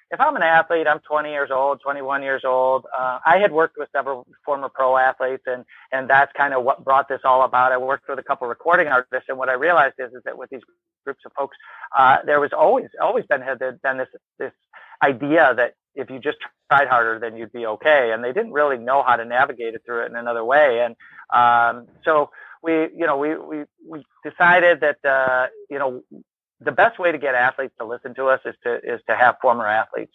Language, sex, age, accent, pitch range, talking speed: English, male, 50-69, American, 125-145 Hz, 230 wpm